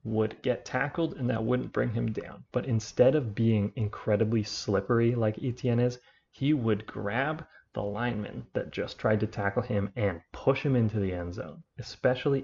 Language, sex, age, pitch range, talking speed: English, male, 30-49, 100-125 Hz, 180 wpm